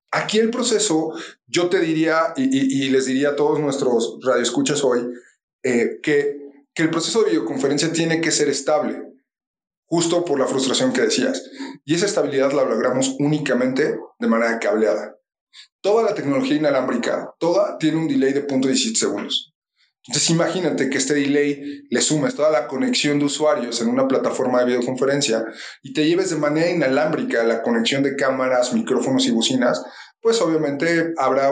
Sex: male